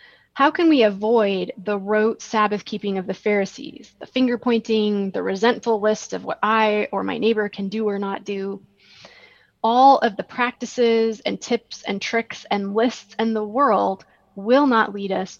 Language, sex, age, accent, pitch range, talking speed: English, female, 20-39, American, 200-245 Hz, 175 wpm